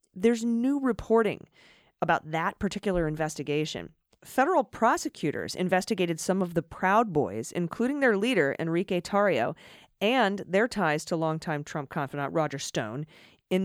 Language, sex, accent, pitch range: English, female, American, 155-200 Hz